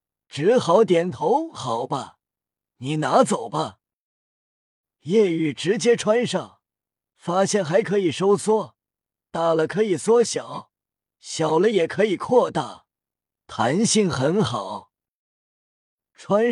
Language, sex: Chinese, male